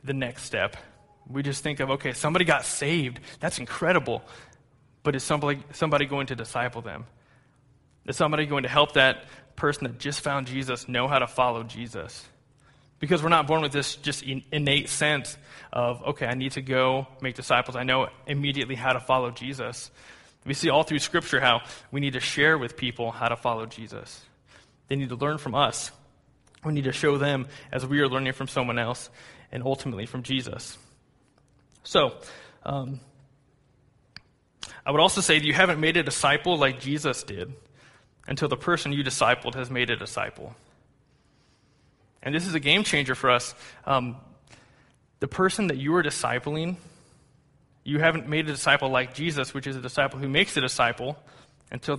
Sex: male